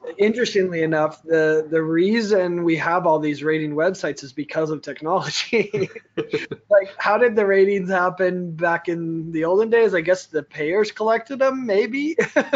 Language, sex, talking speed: English, male, 160 wpm